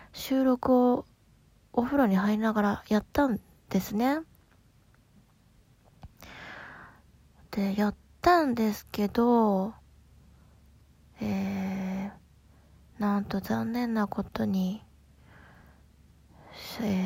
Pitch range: 190-250 Hz